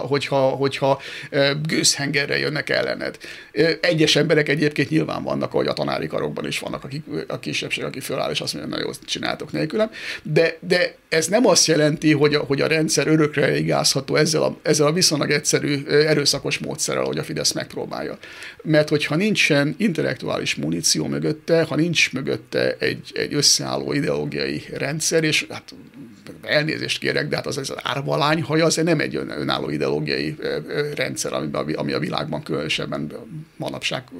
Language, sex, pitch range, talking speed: Hungarian, male, 145-160 Hz, 155 wpm